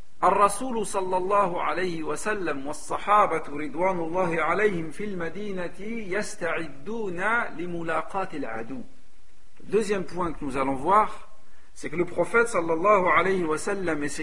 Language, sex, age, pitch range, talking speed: French, male, 50-69, 165-220 Hz, 60 wpm